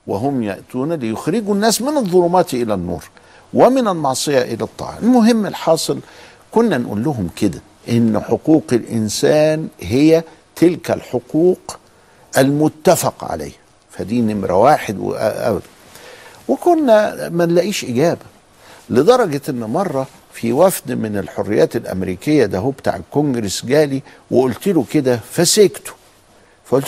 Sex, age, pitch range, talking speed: male, 60-79, 110-170 Hz, 115 wpm